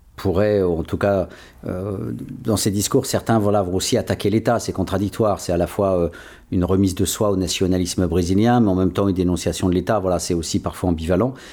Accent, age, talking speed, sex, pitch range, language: French, 50-69, 215 wpm, male, 80-100 Hz, French